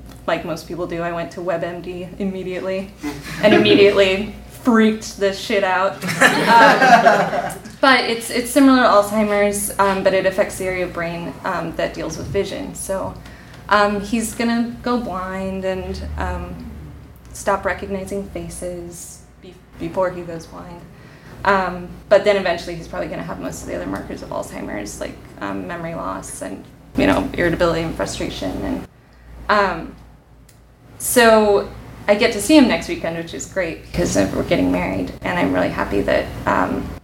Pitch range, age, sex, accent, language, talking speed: 165-200 Hz, 20-39, female, American, English, 165 wpm